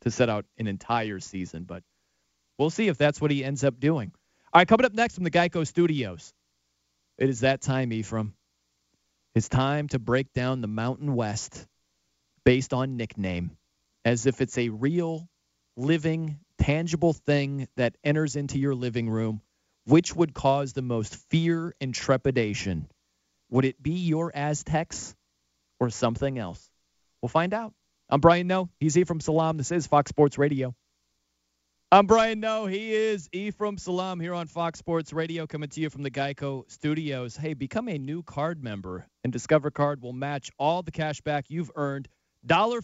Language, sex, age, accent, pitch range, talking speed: English, male, 30-49, American, 110-160 Hz, 175 wpm